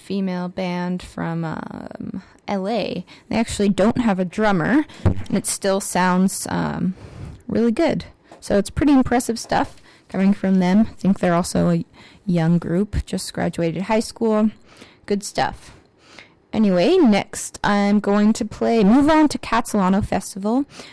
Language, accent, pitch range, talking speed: English, American, 180-230 Hz, 145 wpm